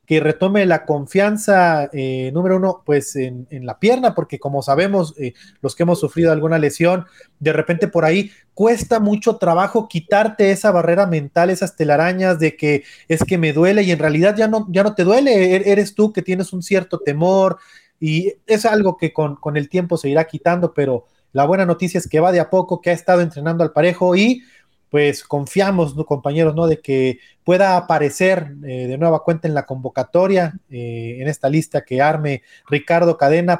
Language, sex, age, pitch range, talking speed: Spanish, male, 30-49, 145-185 Hz, 195 wpm